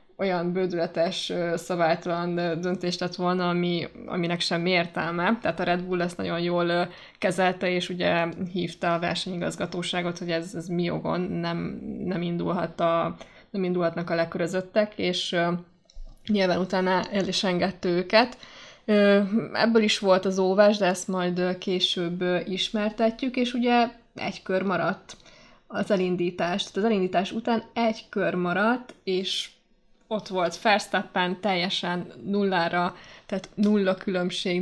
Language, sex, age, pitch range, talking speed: Hungarian, female, 20-39, 175-200 Hz, 130 wpm